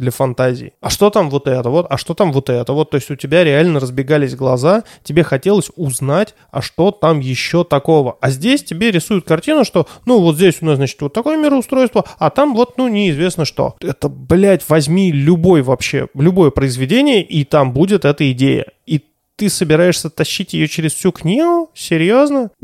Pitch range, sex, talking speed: 145-190 Hz, male, 190 wpm